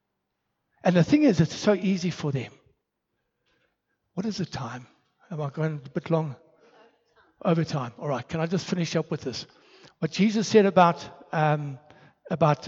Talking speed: 170 wpm